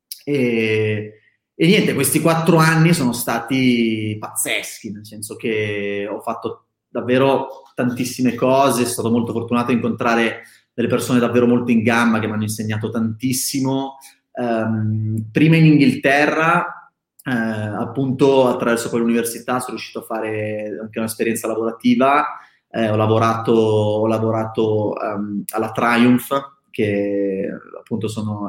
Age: 30-49